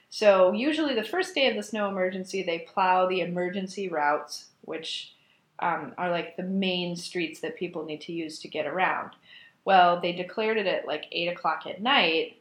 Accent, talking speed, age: American, 190 wpm, 30-49